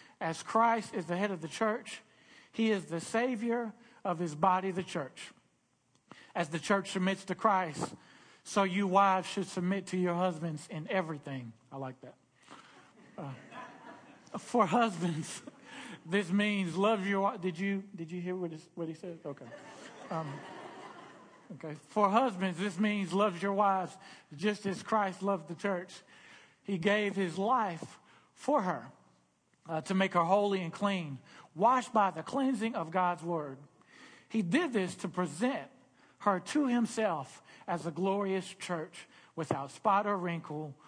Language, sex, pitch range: English, male, 170-205 Hz